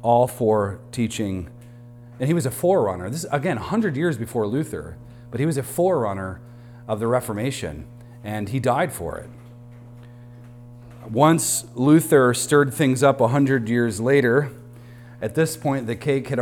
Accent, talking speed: American, 150 wpm